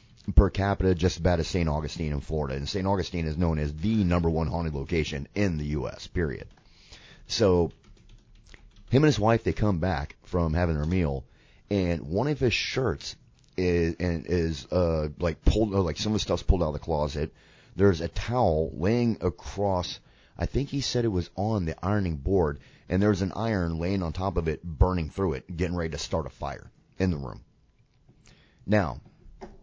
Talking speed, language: 190 wpm, English